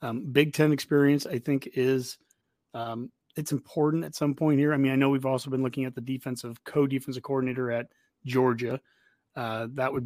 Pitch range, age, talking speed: 125-145 Hz, 30-49, 190 wpm